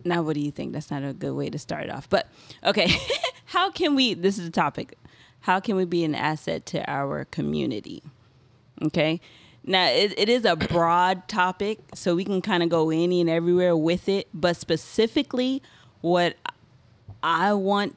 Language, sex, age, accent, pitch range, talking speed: English, female, 20-39, American, 150-180 Hz, 185 wpm